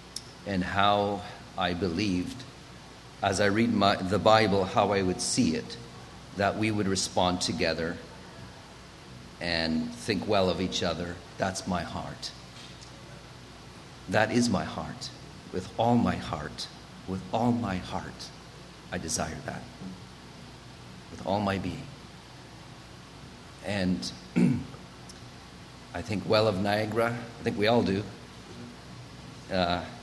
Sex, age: male, 50-69